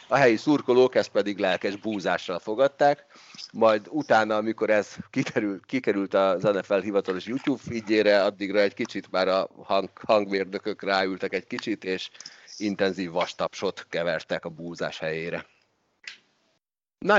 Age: 40-59